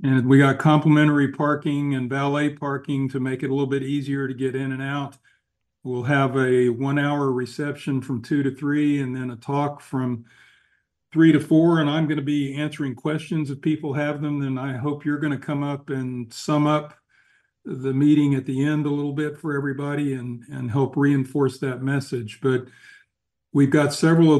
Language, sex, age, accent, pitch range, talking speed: English, male, 50-69, American, 135-150 Hz, 200 wpm